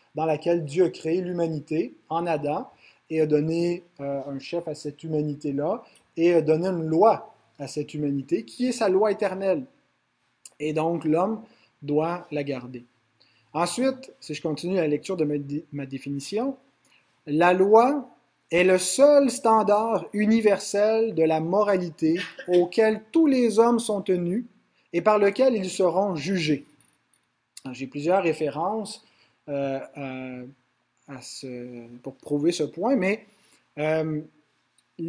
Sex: male